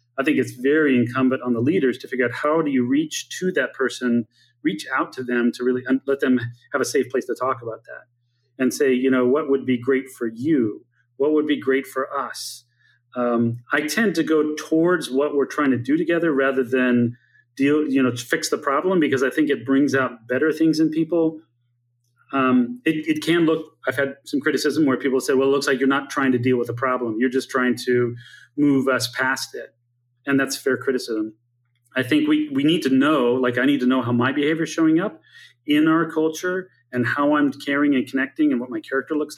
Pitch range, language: 125-155 Hz, English